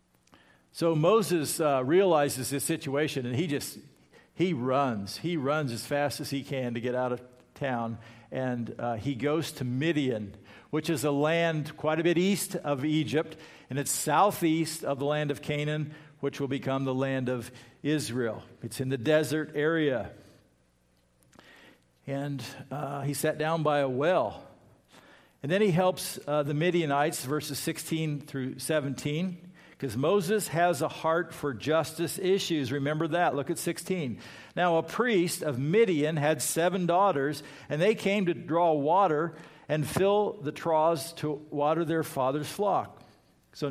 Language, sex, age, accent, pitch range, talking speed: English, male, 50-69, American, 130-160 Hz, 160 wpm